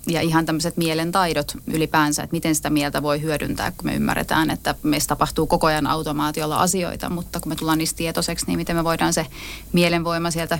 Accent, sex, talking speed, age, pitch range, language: native, female, 195 wpm, 30-49, 160-175 Hz, Finnish